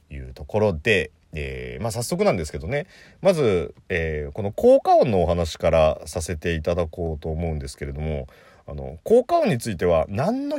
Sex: male